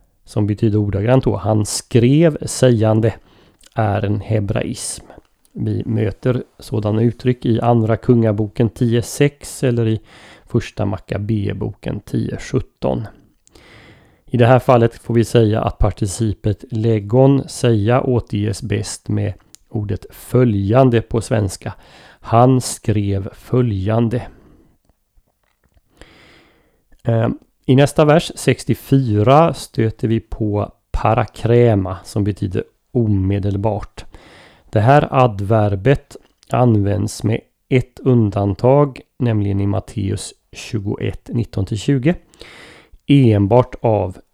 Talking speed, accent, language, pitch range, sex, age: 95 wpm, native, Swedish, 105-125 Hz, male, 30-49